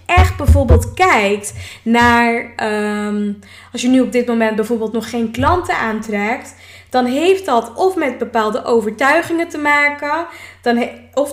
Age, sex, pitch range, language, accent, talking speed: 10-29, female, 230-285 Hz, Dutch, Dutch, 150 wpm